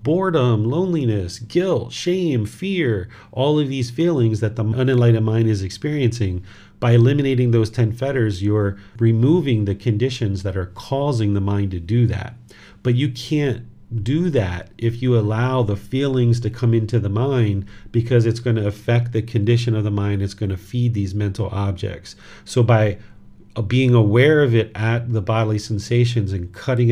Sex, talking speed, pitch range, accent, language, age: male, 170 wpm, 105-120 Hz, American, English, 40-59